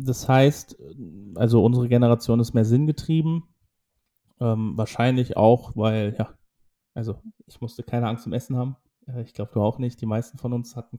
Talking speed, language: 175 wpm, German